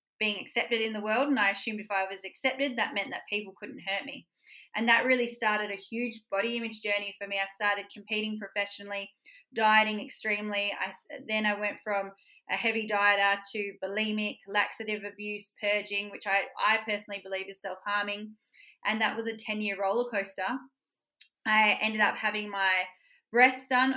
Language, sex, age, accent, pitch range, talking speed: English, female, 20-39, Australian, 205-240 Hz, 175 wpm